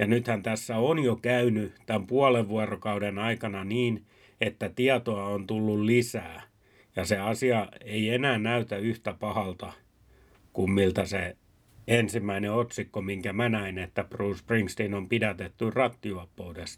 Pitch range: 100-120 Hz